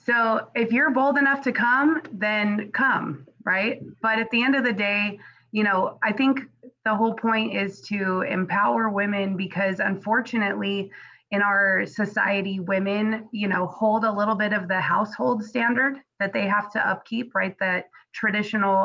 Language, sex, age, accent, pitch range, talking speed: Spanish, female, 20-39, American, 185-225 Hz, 165 wpm